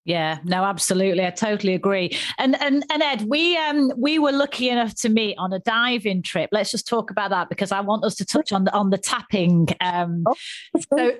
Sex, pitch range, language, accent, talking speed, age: female, 180-225 Hz, English, British, 215 wpm, 30-49